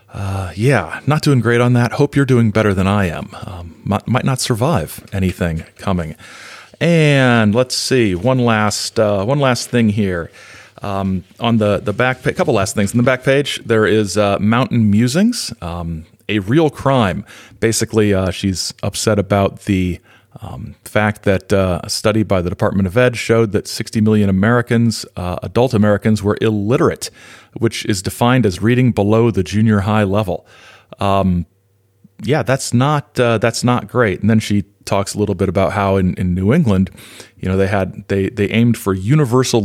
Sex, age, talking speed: male, 40-59, 180 wpm